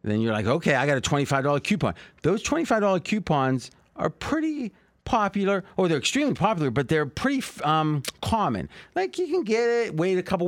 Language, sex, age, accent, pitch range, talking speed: English, male, 40-59, American, 115-170 Hz, 185 wpm